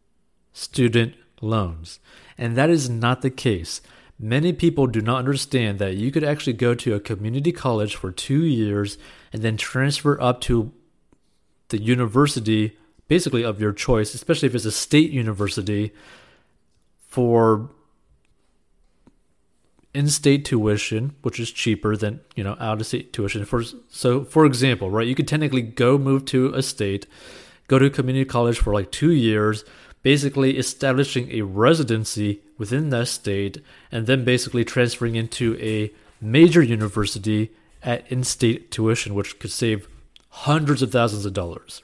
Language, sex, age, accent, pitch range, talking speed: English, male, 30-49, American, 105-135 Hz, 140 wpm